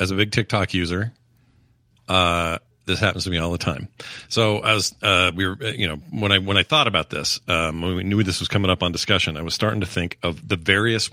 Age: 40-59